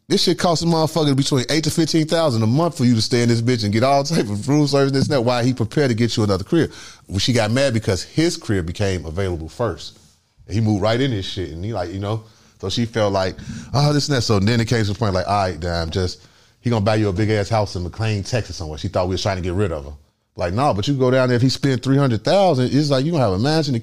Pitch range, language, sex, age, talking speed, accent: 100-130 Hz, English, male, 30-49, 310 wpm, American